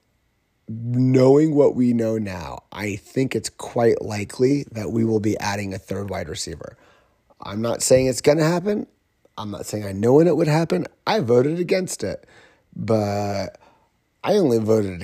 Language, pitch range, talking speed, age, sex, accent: English, 100-120 Hz, 170 wpm, 30-49, male, American